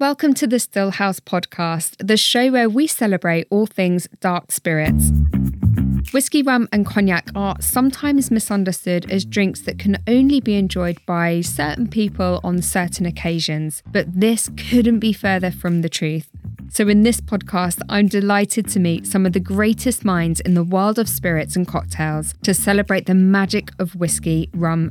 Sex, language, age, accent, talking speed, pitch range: female, English, 10-29, British, 165 wpm, 170-210 Hz